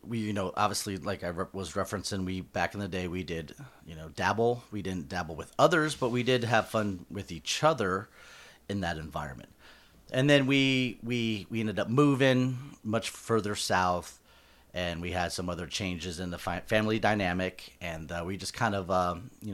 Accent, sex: American, male